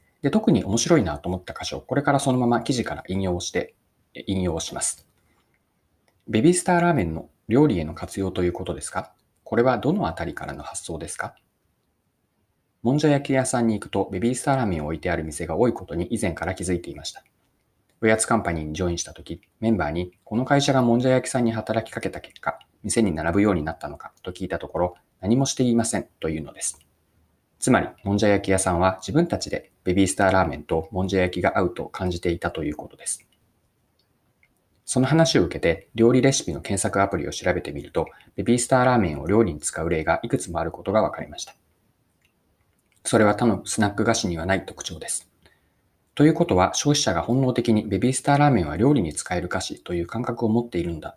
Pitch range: 90-120 Hz